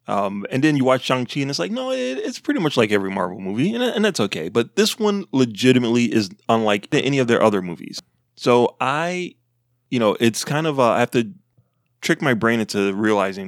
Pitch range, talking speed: 110-135 Hz, 215 wpm